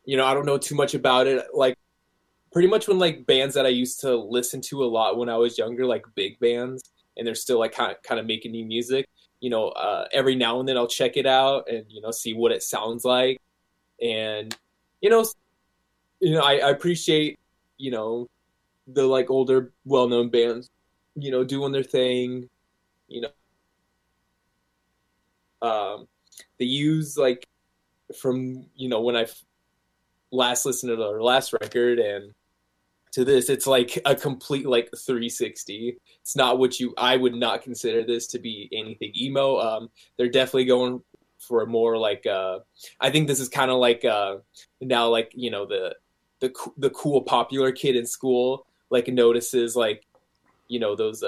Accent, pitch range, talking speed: American, 110-135 Hz, 180 wpm